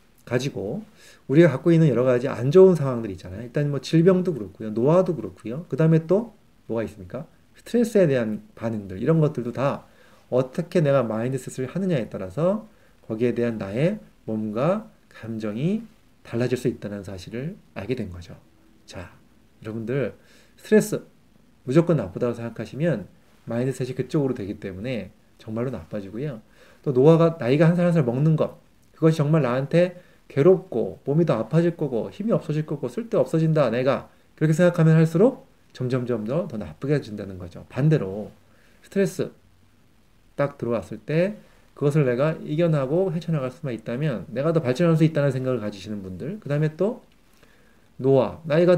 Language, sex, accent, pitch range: Korean, male, native, 115-170 Hz